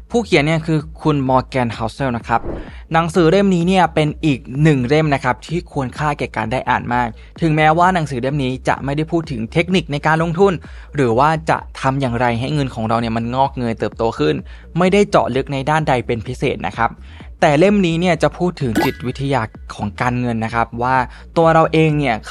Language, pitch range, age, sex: Thai, 120-155 Hz, 20-39, male